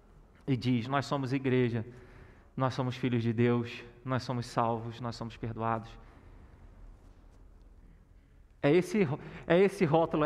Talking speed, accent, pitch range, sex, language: 125 wpm, Brazilian, 120-165 Hz, male, Portuguese